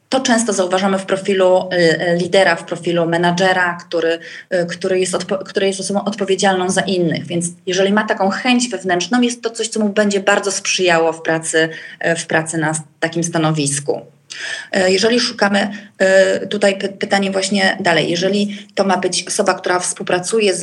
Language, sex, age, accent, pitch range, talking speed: Polish, female, 20-39, native, 180-205 Hz, 150 wpm